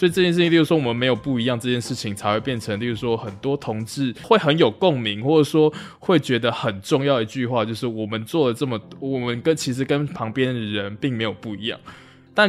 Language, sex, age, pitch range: Chinese, male, 20-39, 115-150 Hz